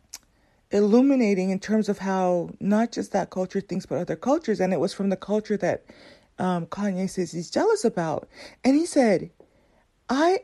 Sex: female